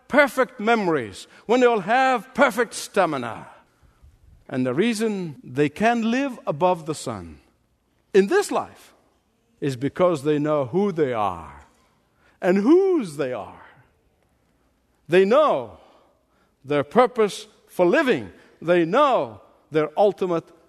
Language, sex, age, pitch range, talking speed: English, male, 60-79, 150-210 Hz, 120 wpm